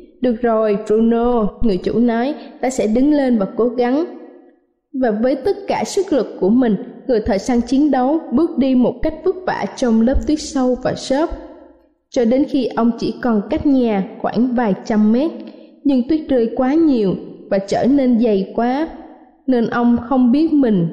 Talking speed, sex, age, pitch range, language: 185 wpm, female, 20-39, 220-290 Hz, Vietnamese